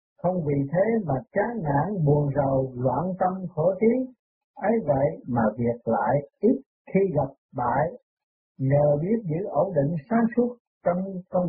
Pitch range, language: 145-210 Hz, Vietnamese